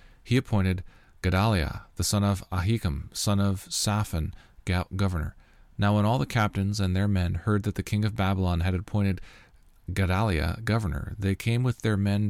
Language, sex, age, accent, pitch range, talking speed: English, male, 40-59, American, 90-105 Hz, 165 wpm